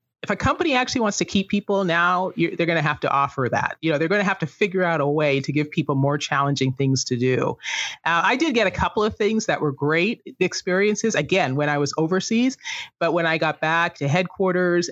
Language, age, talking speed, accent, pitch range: English, 30-49, 235 wpm, American, 150-195 Hz